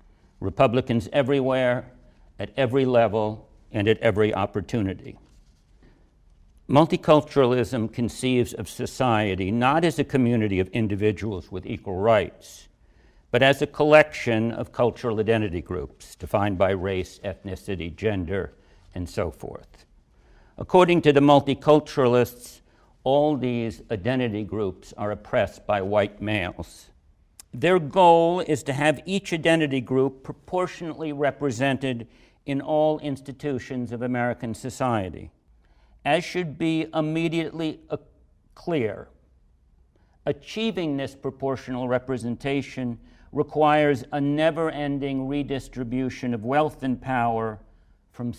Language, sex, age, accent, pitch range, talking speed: English, male, 60-79, American, 105-145 Hz, 105 wpm